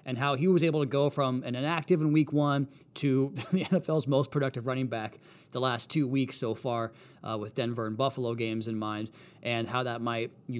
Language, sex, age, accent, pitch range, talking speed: English, male, 30-49, American, 115-135 Hz, 220 wpm